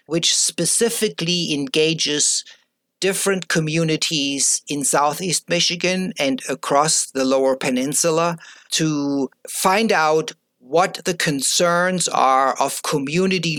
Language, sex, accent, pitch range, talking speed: English, male, German, 140-170 Hz, 95 wpm